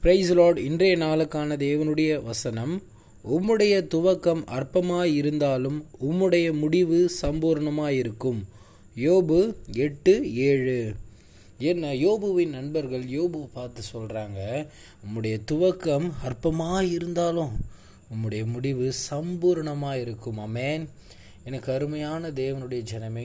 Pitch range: 115-155 Hz